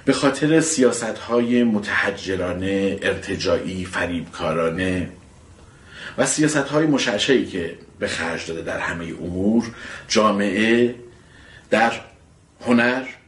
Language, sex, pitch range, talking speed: Persian, male, 90-130 Hz, 95 wpm